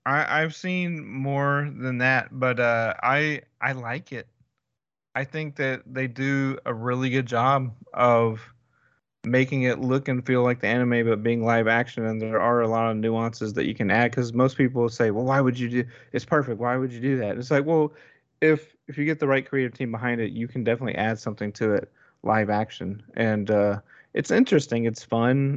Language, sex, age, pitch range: English, male, 30-49, 115-135 Hz